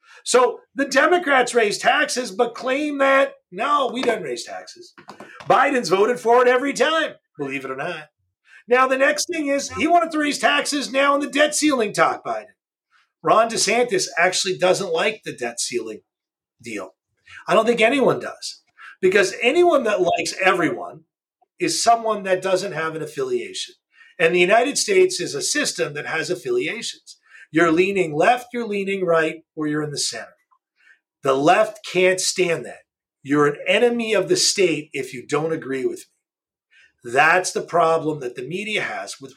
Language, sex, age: English, male, 50-69